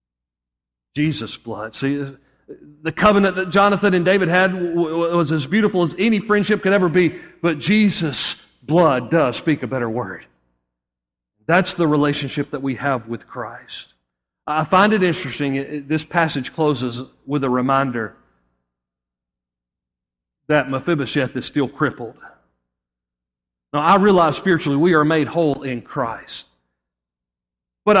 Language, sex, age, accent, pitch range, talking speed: English, male, 40-59, American, 110-170 Hz, 130 wpm